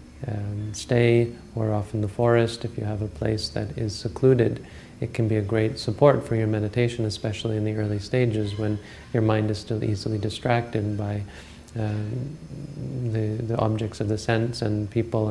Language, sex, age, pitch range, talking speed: English, male, 30-49, 105-115 Hz, 180 wpm